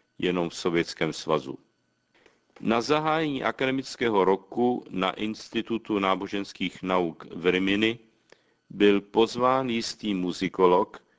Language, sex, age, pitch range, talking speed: Czech, male, 50-69, 95-115 Hz, 95 wpm